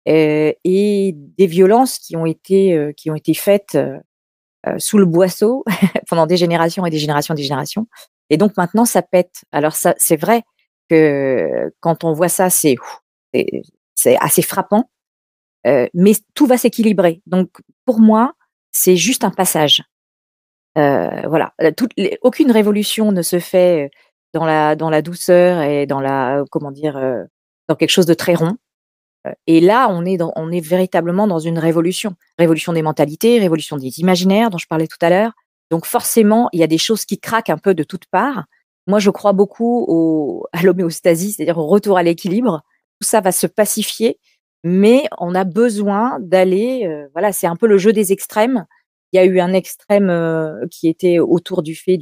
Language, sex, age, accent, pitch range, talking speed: French, female, 40-59, French, 160-210 Hz, 180 wpm